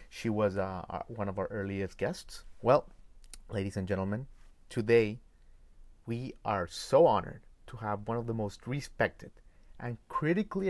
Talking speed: 145 wpm